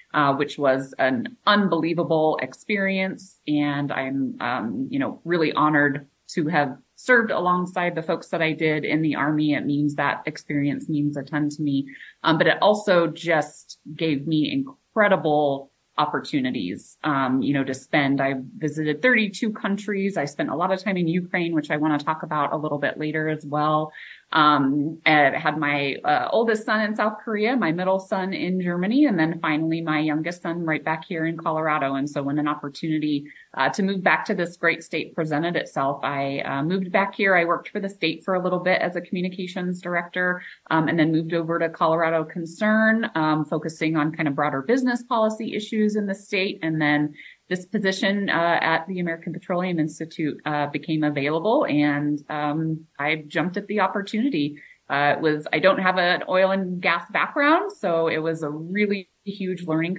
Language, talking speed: English, 190 wpm